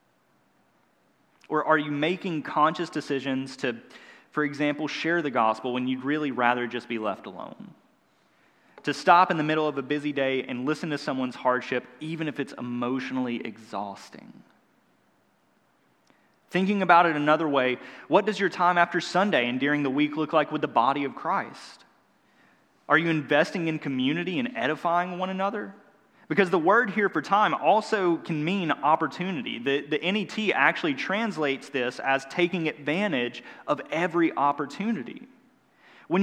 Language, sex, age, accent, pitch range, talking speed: English, male, 30-49, American, 145-200 Hz, 155 wpm